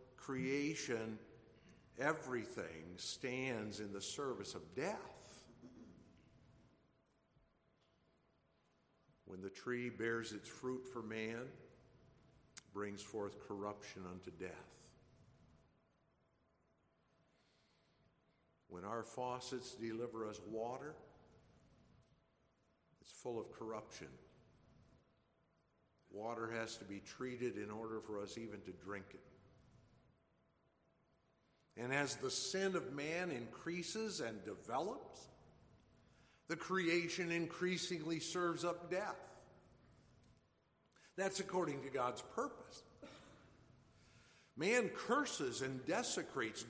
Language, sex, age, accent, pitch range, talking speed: English, male, 60-79, American, 110-145 Hz, 85 wpm